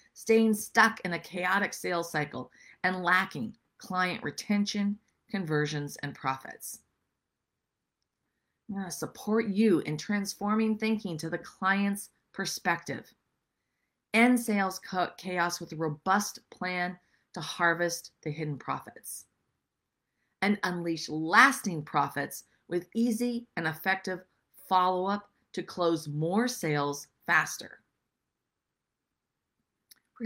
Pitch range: 170-215 Hz